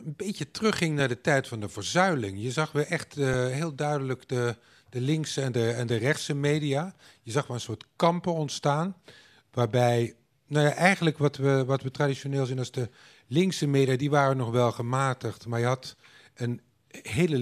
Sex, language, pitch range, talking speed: male, Dutch, 115-145 Hz, 195 wpm